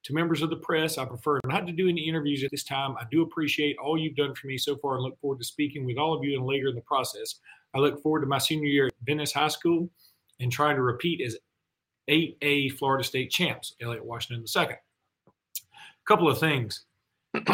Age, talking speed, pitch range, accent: 40-59, 230 wpm, 125-160 Hz, American